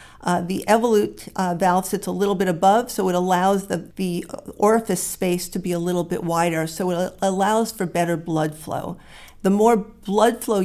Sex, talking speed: female, 190 wpm